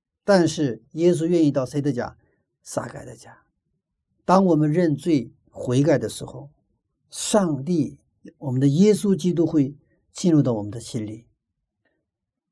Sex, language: male, Chinese